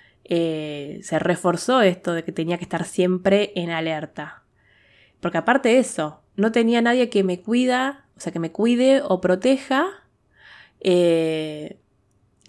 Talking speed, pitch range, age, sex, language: 140 wpm, 155-185 Hz, 20-39, female, Spanish